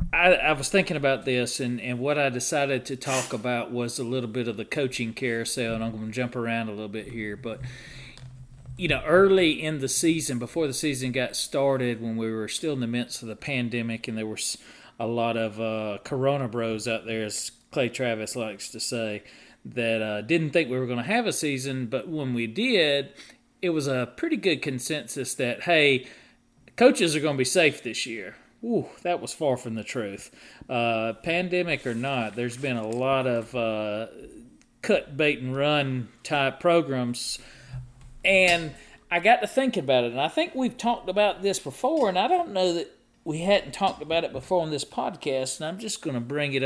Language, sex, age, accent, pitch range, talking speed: English, male, 40-59, American, 120-160 Hz, 205 wpm